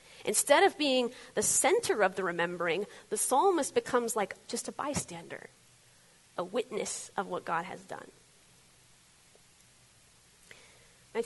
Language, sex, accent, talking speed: English, female, American, 125 wpm